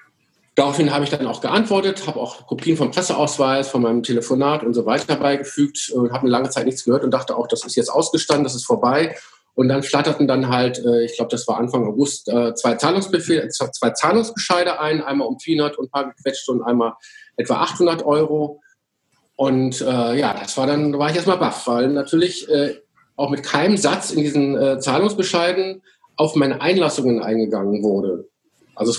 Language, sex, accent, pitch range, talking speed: German, male, German, 130-160 Hz, 190 wpm